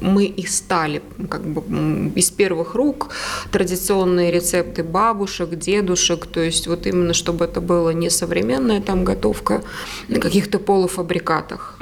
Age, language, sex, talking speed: 20-39, Russian, female, 130 wpm